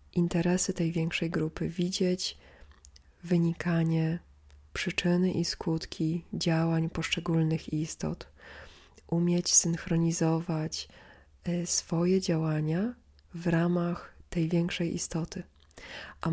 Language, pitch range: Polish, 160-185 Hz